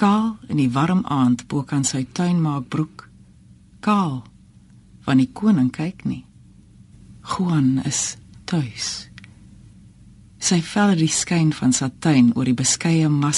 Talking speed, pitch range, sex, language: 135 wpm, 130-180 Hz, female, Dutch